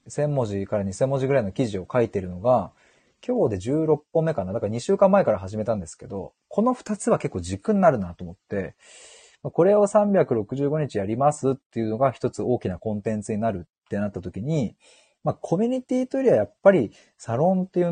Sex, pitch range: male, 105-165 Hz